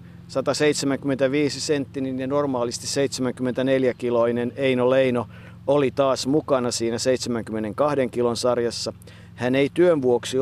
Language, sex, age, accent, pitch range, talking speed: Finnish, male, 50-69, native, 110-140 Hz, 105 wpm